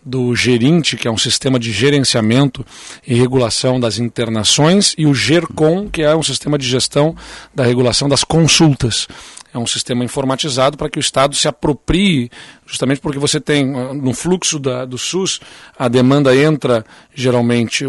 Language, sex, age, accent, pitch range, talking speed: Portuguese, male, 40-59, Brazilian, 125-155 Hz, 160 wpm